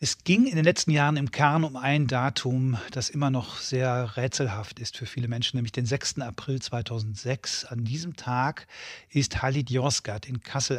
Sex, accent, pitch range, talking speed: male, German, 125-145 Hz, 185 wpm